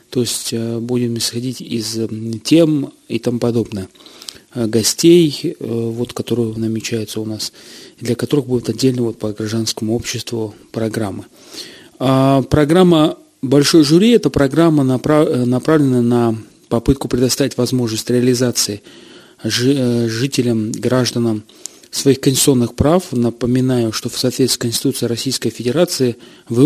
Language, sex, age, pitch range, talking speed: Russian, male, 30-49, 115-140 Hz, 120 wpm